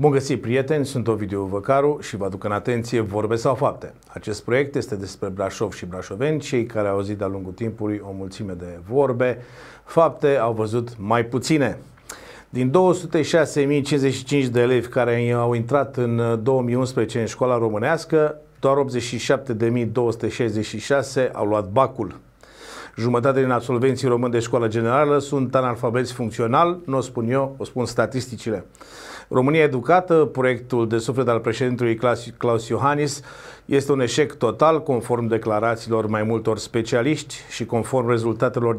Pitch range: 115-140 Hz